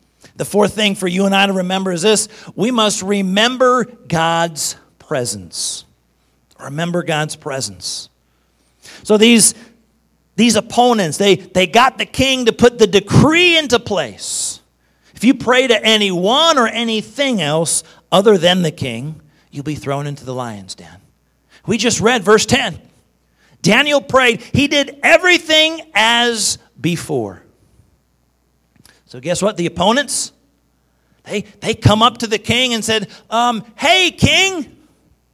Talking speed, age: 140 wpm, 40-59